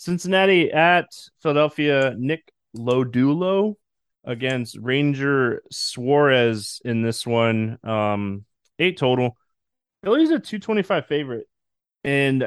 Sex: male